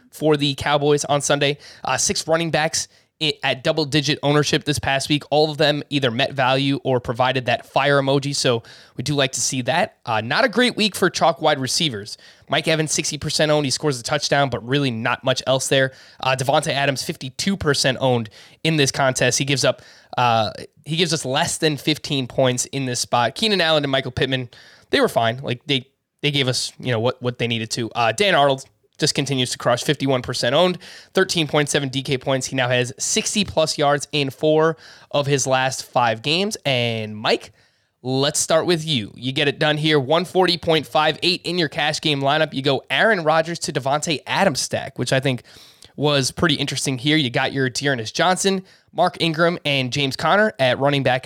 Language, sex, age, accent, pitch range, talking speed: English, male, 20-39, American, 130-155 Hz, 200 wpm